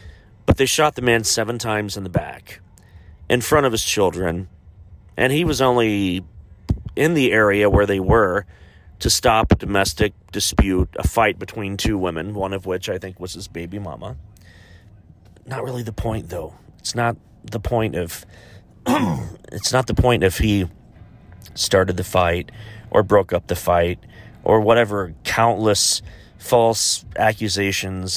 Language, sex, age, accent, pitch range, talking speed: English, male, 40-59, American, 90-110 Hz, 155 wpm